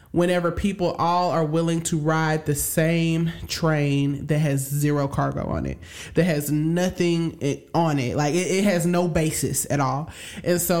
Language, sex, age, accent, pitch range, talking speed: English, male, 20-39, American, 155-180 Hz, 170 wpm